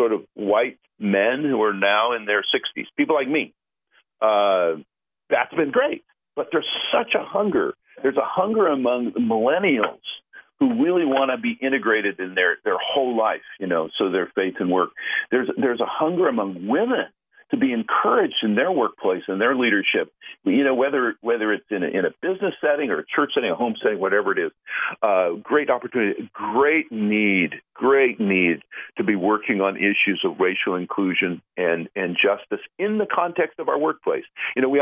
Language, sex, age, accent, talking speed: English, male, 50-69, American, 185 wpm